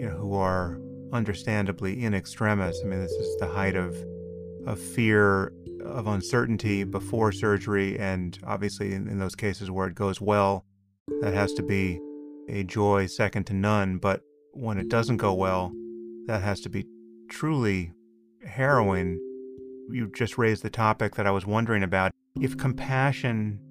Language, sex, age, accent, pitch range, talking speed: English, male, 30-49, American, 95-120 Hz, 160 wpm